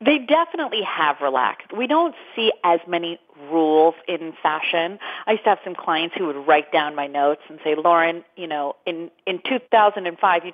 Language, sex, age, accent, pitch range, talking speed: English, female, 30-49, American, 170-255 Hz, 190 wpm